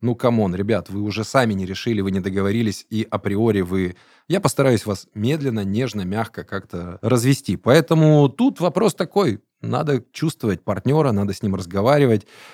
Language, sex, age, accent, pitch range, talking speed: Russian, male, 20-39, native, 100-130 Hz, 160 wpm